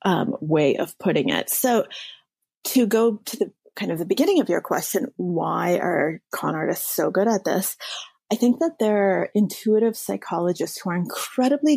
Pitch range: 185-255 Hz